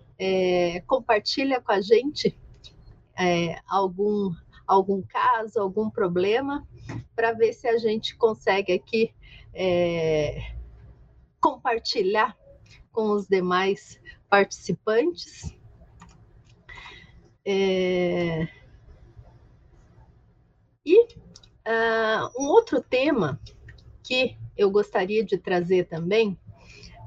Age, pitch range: 40-59, 185-260 Hz